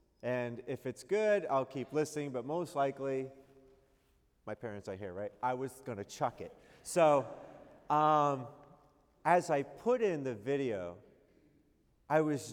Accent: American